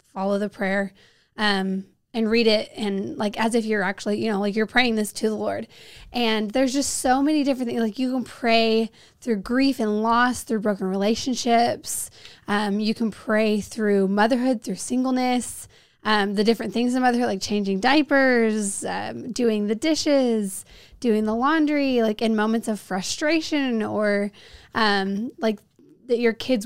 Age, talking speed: 20-39, 170 wpm